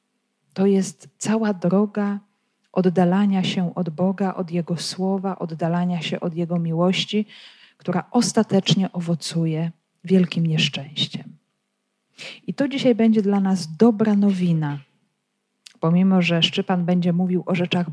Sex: female